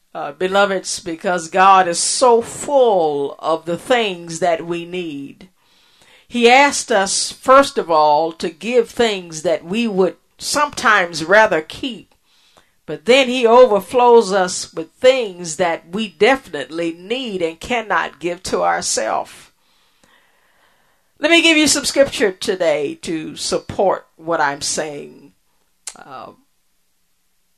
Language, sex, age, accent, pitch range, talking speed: English, female, 50-69, American, 170-240 Hz, 125 wpm